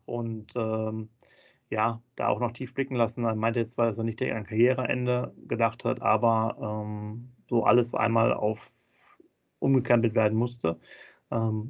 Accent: German